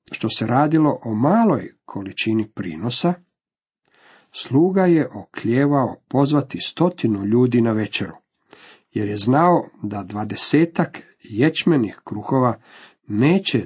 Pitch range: 105-145 Hz